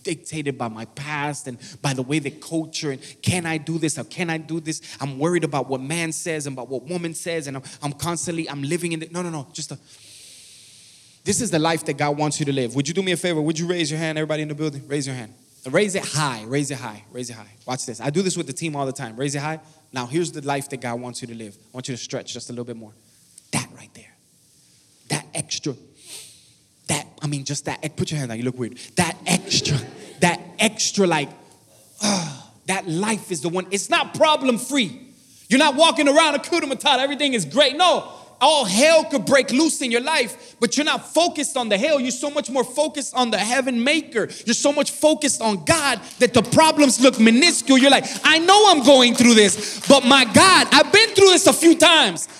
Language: English